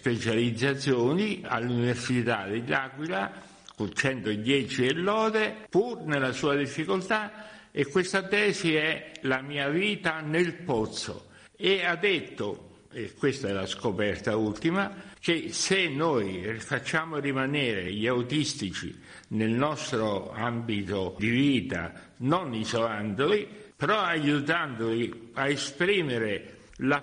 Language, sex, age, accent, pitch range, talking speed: Italian, male, 60-79, native, 115-155 Hz, 110 wpm